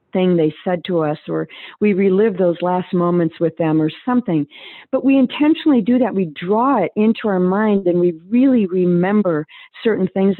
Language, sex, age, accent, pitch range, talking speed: English, female, 50-69, American, 180-235 Hz, 185 wpm